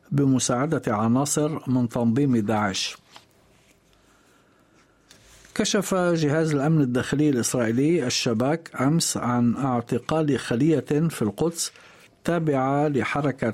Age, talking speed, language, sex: 50-69, 85 wpm, Arabic, male